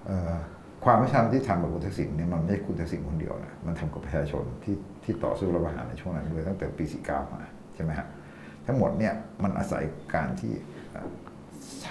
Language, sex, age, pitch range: Thai, male, 60-79, 75-100 Hz